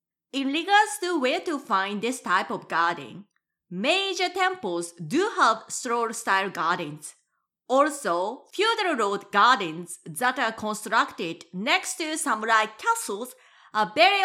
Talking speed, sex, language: 120 wpm, female, English